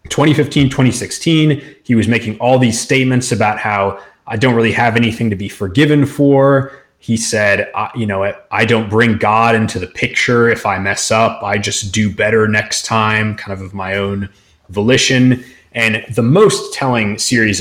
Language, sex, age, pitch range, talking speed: English, male, 30-49, 100-125 Hz, 175 wpm